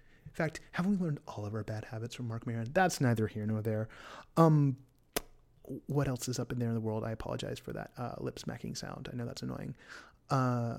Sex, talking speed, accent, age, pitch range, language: male, 215 wpm, American, 30-49, 115-135 Hz, English